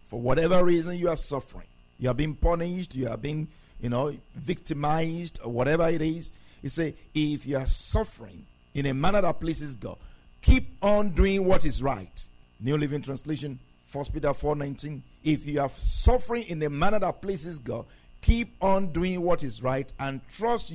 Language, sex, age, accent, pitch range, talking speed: English, male, 50-69, Nigerian, 115-170 Hz, 180 wpm